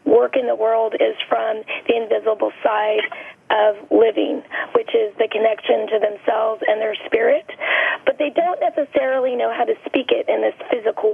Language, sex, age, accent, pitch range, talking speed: English, female, 30-49, American, 215-295 Hz, 170 wpm